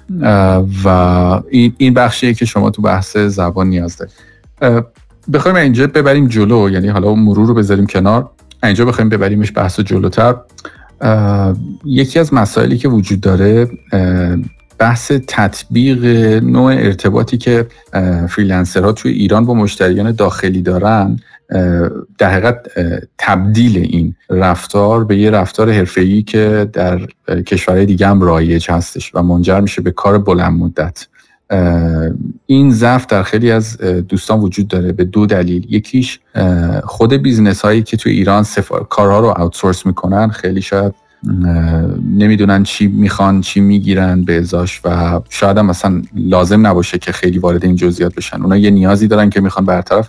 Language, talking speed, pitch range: Persian, 140 wpm, 90-115 Hz